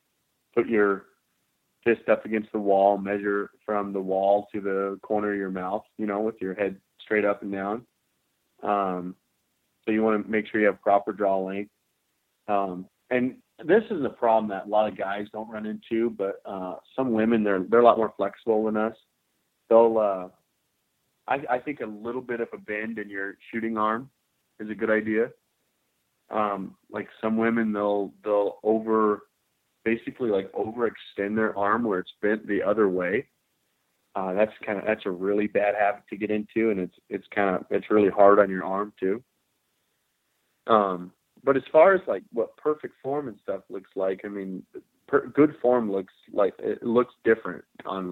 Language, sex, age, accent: English, male, 30-49, American